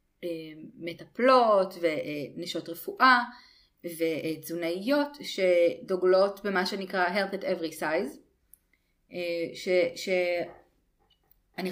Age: 30-49